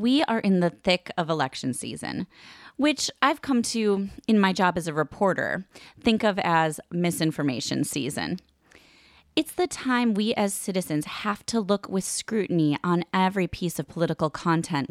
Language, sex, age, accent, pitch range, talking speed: English, female, 30-49, American, 165-220 Hz, 160 wpm